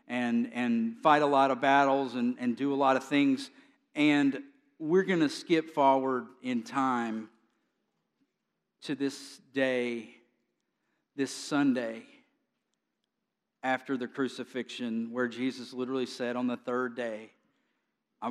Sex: male